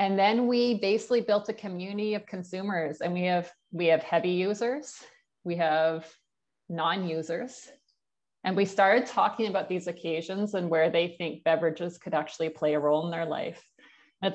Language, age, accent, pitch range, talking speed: English, 30-49, American, 160-200 Hz, 165 wpm